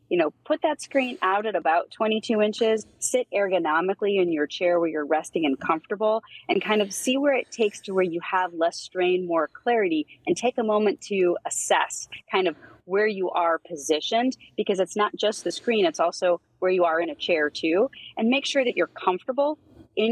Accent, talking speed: American, 205 wpm